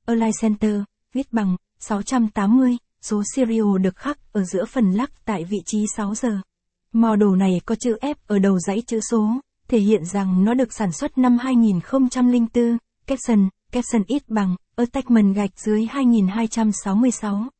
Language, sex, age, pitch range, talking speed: Vietnamese, female, 20-39, 205-240 Hz, 155 wpm